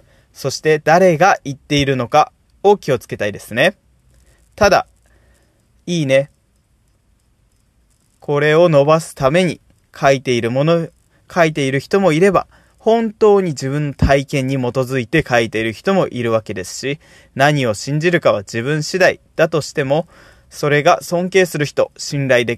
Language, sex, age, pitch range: Japanese, male, 20-39, 130-175 Hz